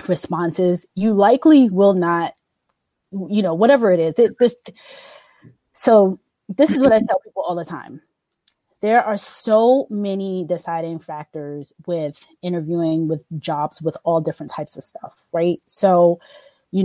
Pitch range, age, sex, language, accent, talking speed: 165-200 Hz, 20-39, female, English, American, 145 wpm